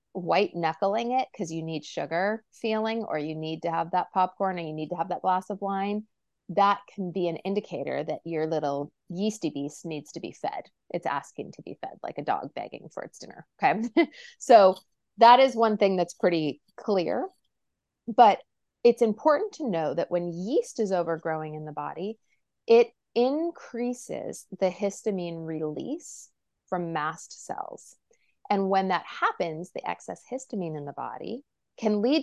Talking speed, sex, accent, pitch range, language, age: 170 wpm, female, American, 170-220 Hz, English, 30-49